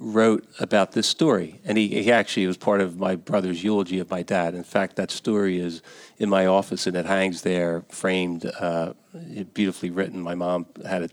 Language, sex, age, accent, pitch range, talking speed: English, male, 40-59, American, 90-100 Hz, 200 wpm